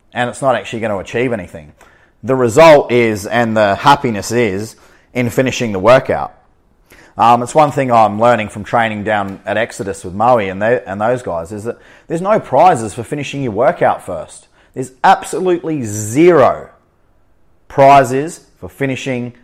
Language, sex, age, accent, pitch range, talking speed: English, male, 30-49, Australian, 115-155 Hz, 165 wpm